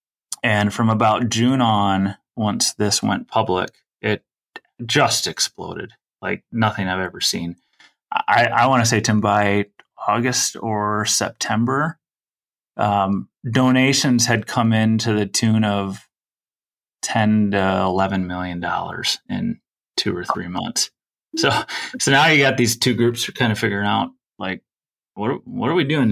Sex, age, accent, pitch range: male, 30-49, American, 95-120 Hz